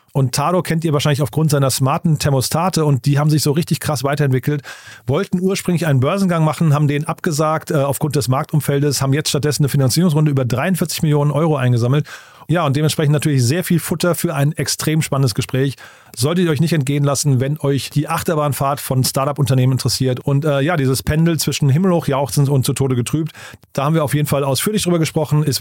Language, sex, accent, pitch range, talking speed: German, male, German, 140-165 Hz, 200 wpm